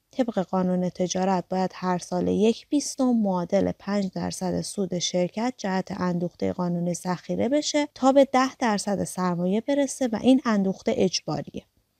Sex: female